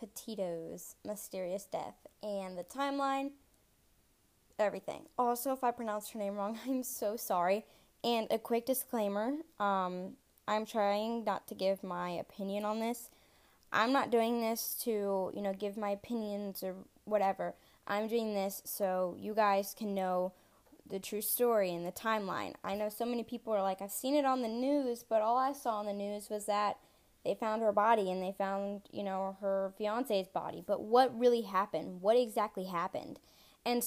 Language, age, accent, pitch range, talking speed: English, 10-29, American, 195-235 Hz, 175 wpm